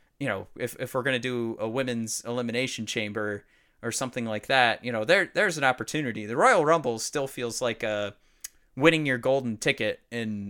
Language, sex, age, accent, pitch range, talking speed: English, male, 30-49, American, 115-145 Hz, 195 wpm